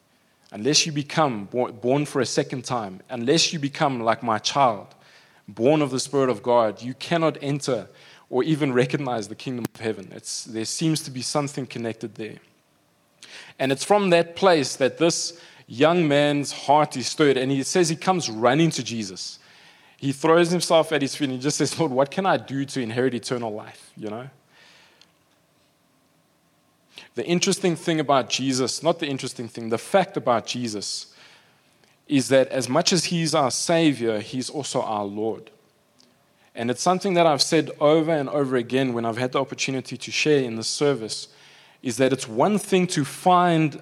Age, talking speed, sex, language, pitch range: 20-39, 175 wpm, male, English, 125-155 Hz